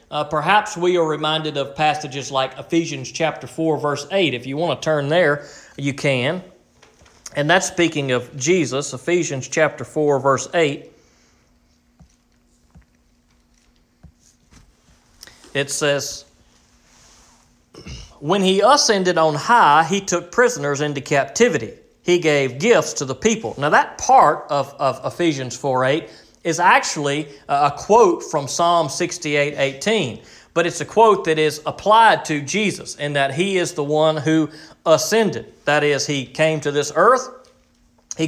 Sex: male